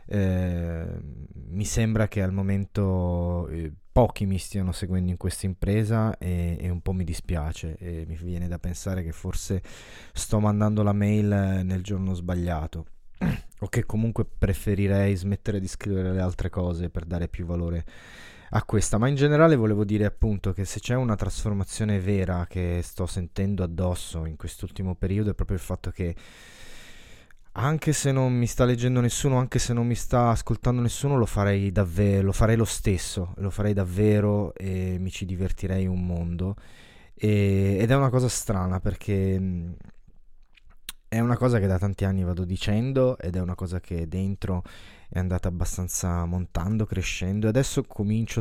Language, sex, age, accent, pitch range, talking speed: Italian, male, 20-39, native, 90-105 Hz, 165 wpm